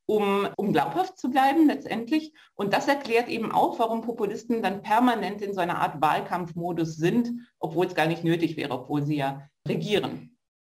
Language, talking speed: German, 175 wpm